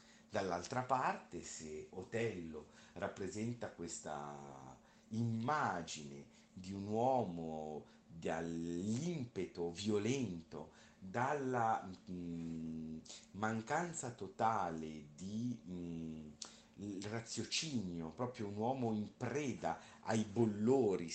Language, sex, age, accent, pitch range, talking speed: Italian, male, 50-69, native, 85-125 Hz, 75 wpm